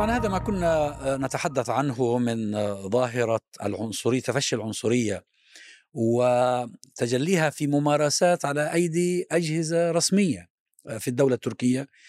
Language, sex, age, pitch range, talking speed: Arabic, male, 50-69, 125-160 Hz, 105 wpm